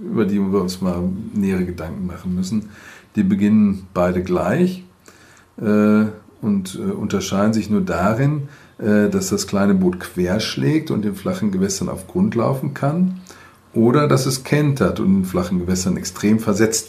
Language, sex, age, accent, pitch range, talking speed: German, male, 50-69, German, 95-115 Hz, 155 wpm